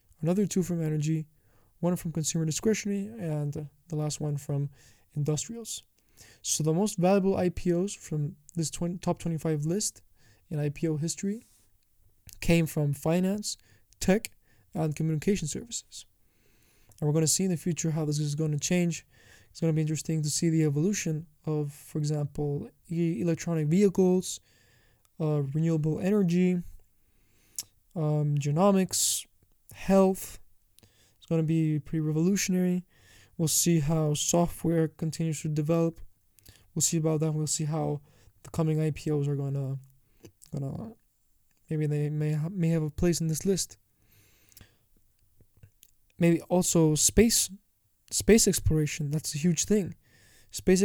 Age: 20-39